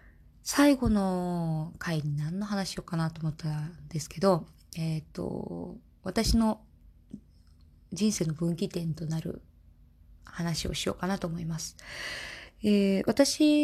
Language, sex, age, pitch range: Japanese, female, 20-39, 160-215 Hz